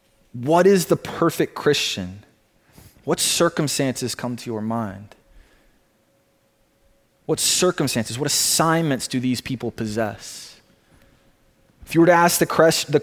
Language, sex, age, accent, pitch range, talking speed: English, male, 20-39, American, 135-195 Hz, 115 wpm